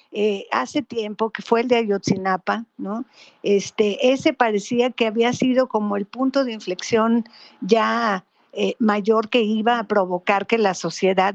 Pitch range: 205-250 Hz